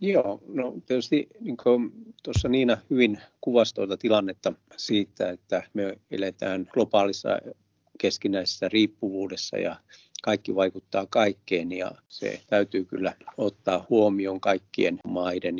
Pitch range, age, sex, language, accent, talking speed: 95-115 Hz, 50-69, male, Finnish, native, 115 wpm